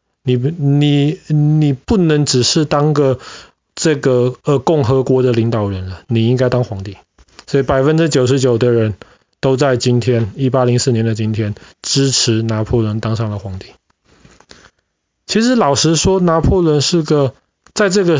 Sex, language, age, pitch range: male, Chinese, 20-39, 115-150 Hz